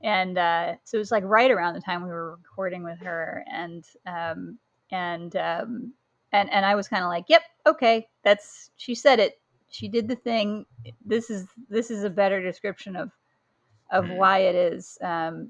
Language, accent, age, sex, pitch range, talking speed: English, American, 30-49, female, 175-220 Hz, 190 wpm